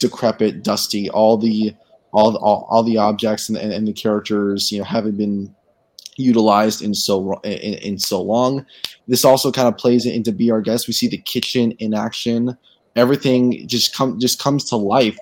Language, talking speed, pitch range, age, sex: English, 190 wpm, 105-120 Hz, 20-39, male